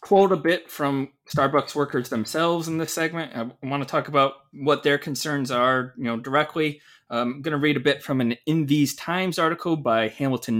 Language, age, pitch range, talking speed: English, 20-39, 135-175 Hz, 205 wpm